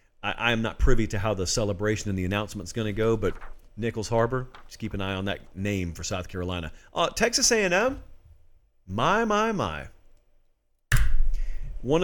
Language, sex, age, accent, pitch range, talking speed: English, male, 40-59, American, 105-165 Hz, 170 wpm